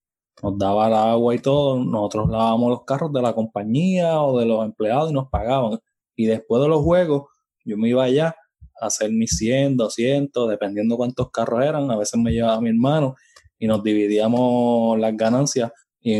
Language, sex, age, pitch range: Spanish, male, 20-39, 115-145 Hz